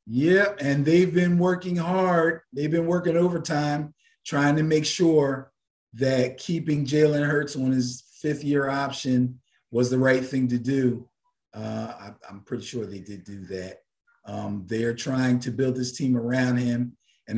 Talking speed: 160 wpm